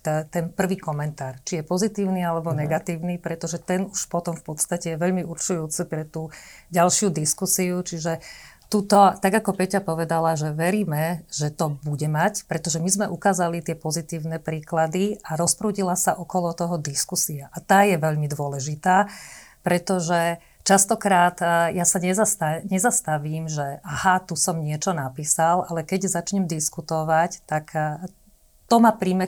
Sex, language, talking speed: female, Slovak, 150 wpm